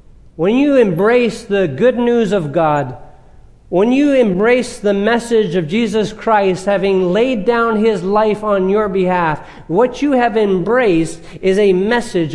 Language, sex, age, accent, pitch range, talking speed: English, male, 40-59, American, 155-210 Hz, 150 wpm